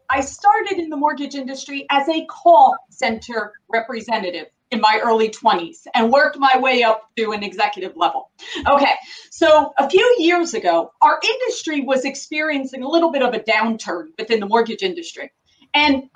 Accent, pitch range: American, 245-375 Hz